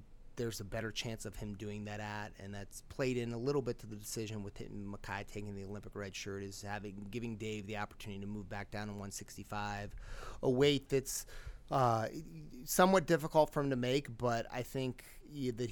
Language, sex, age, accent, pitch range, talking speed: English, male, 30-49, American, 100-120 Hz, 200 wpm